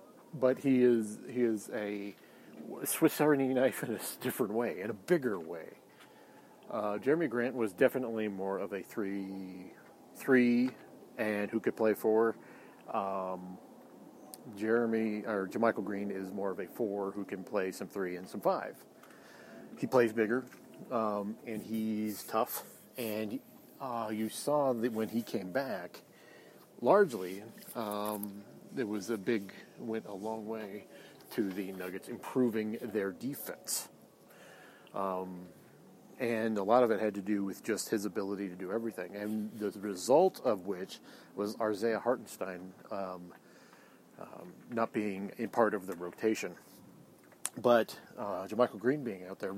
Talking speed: 150 wpm